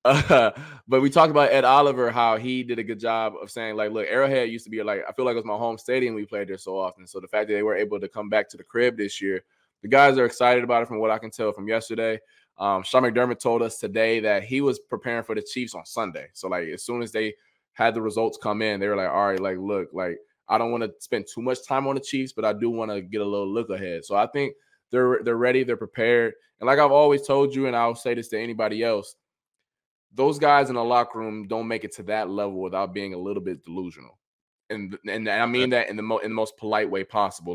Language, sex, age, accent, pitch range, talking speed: English, male, 20-39, American, 100-125 Hz, 275 wpm